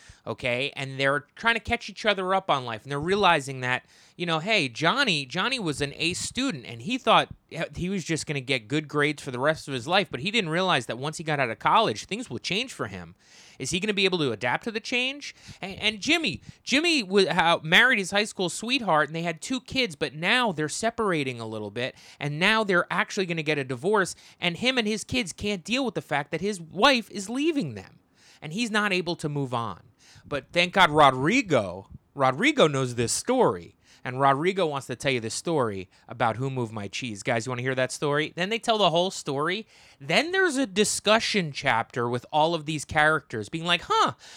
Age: 20-39